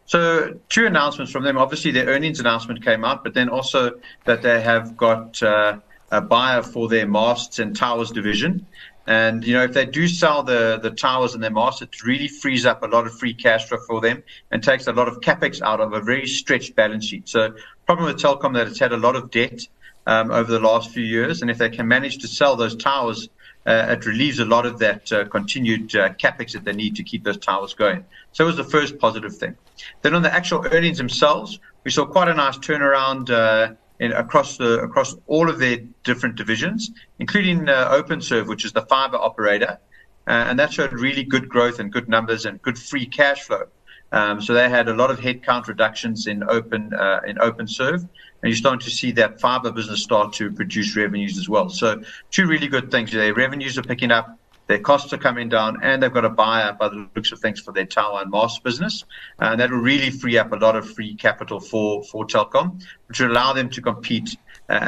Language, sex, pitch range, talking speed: English, male, 110-135 Hz, 220 wpm